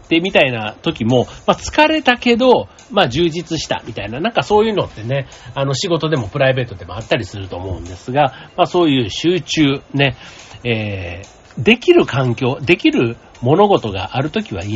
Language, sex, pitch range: Japanese, male, 110-165 Hz